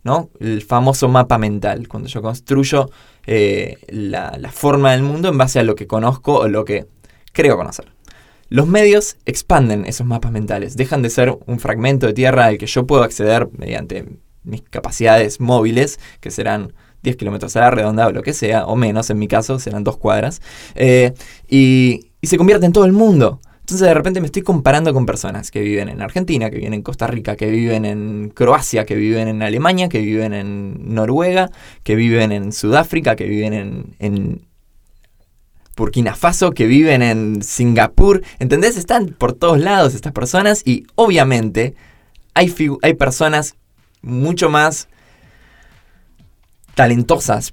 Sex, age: male, 20-39